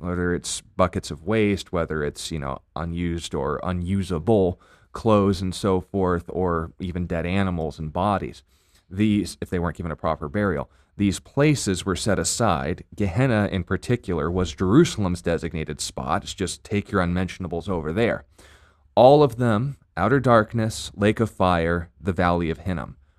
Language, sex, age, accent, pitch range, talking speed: English, male, 30-49, American, 85-100 Hz, 160 wpm